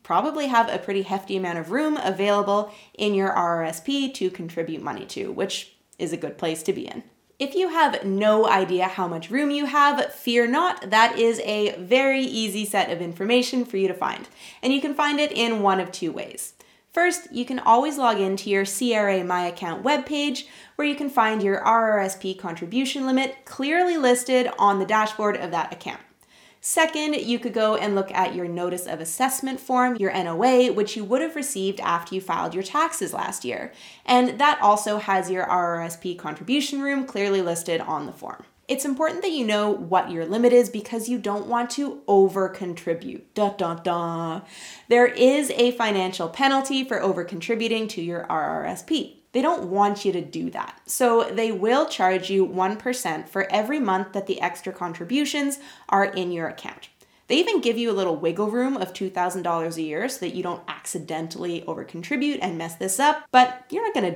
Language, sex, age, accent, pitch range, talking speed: English, female, 20-39, American, 185-260 Hz, 190 wpm